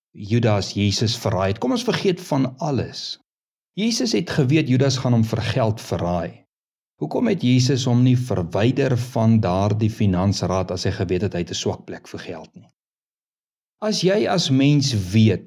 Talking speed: 160 wpm